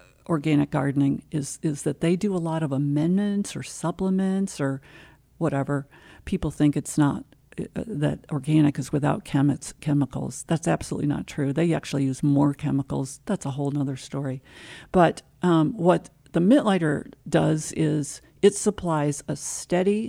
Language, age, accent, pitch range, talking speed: English, 50-69, American, 145-175 Hz, 155 wpm